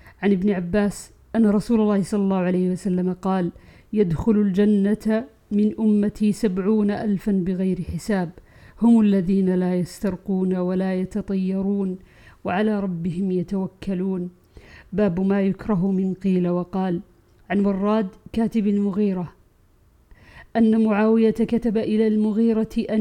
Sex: female